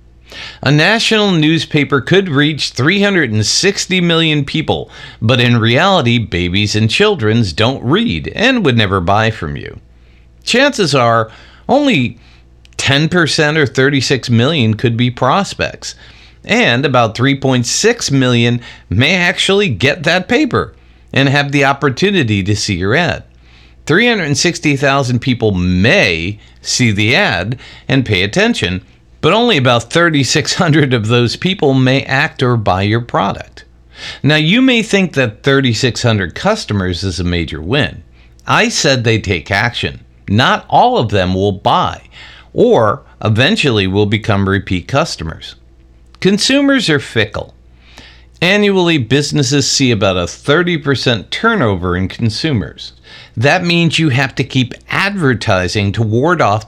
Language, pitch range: English, 100-150 Hz